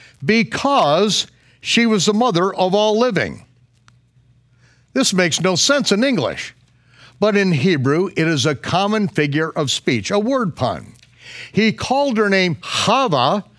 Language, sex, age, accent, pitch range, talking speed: English, male, 60-79, American, 135-215 Hz, 140 wpm